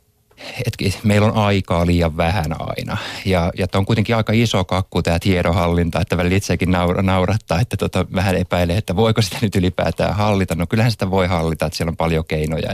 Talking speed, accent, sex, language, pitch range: 195 wpm, native, male, Finnish, 85-105 Hz